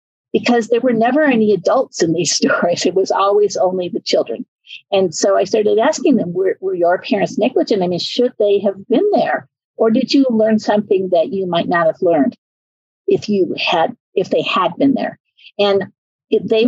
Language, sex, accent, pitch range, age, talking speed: English, female, American, 195-285 Hz, 50-69, 185 wpm